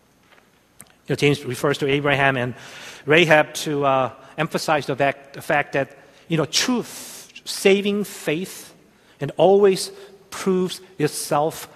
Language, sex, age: Korean, male, 50-69